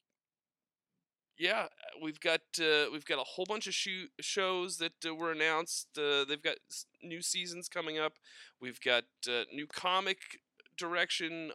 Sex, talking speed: male, 155 wpm